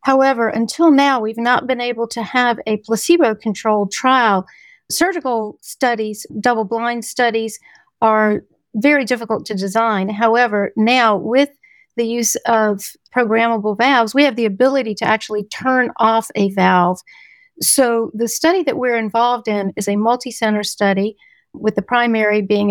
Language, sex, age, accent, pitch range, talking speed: English, female, 50-69, American, 210-245 Hz, 145 wpm